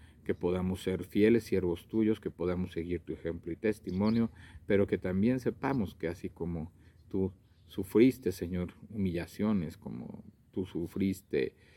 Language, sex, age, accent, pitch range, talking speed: Spanish, male, 50-69, Mexican, 85-100 Hz, 140 wpm